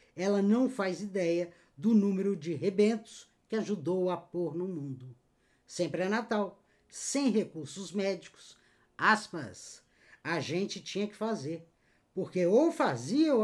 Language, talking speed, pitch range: Portuguese, 135 wpm, 160-215 Hz